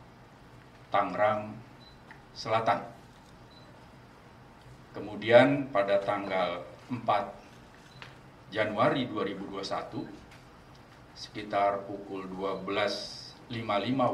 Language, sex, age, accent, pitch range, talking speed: Indonesian, male, 40-59, native, 100-125 Hz, 45 wpm